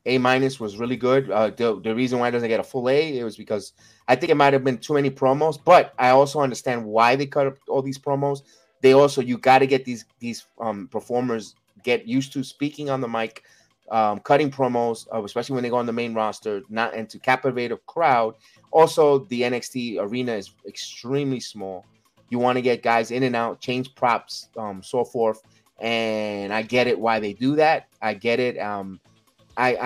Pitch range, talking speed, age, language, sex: 115-135 Hz, 210 wpm, 30-49, English, male